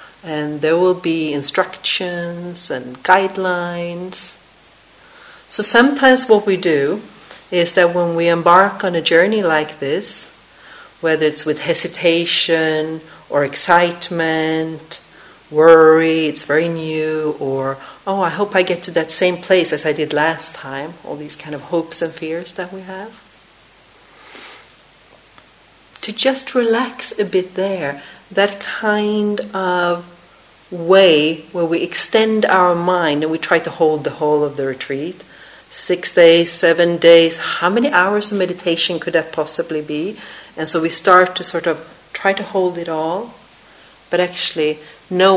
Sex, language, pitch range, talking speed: female, English, 155-185 Hz, 145 wpm